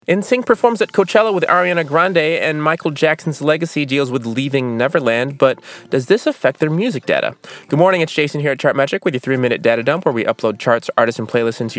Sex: male